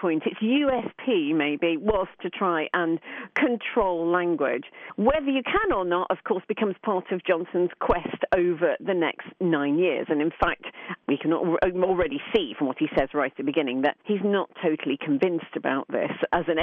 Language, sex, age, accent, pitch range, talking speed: English, female, 40-59, British, 175-260 Hz, 180 wpm